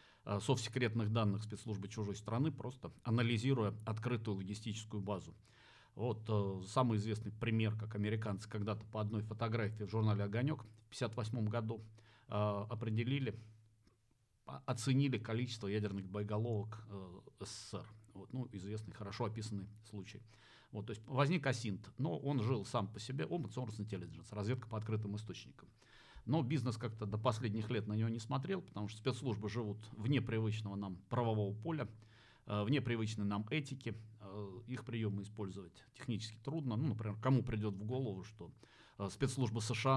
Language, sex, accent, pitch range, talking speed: Russian, male, native, 105-120 Hz, 140 wpm